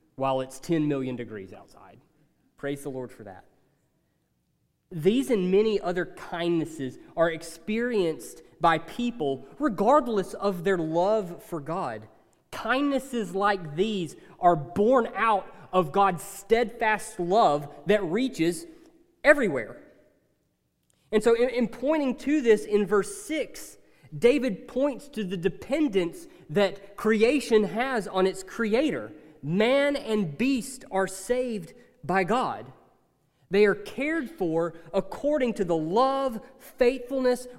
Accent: American